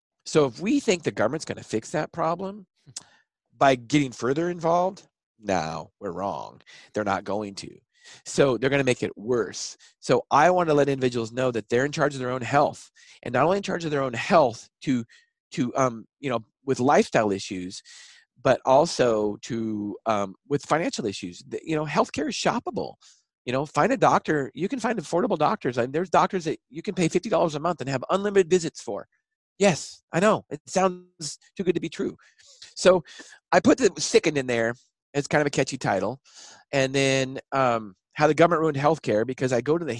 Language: English